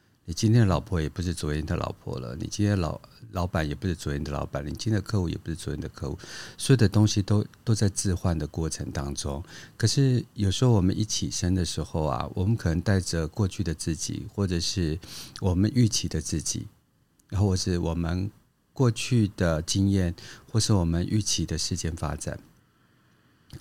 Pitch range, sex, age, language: 85-105 Hz, male, 50-69, Chinese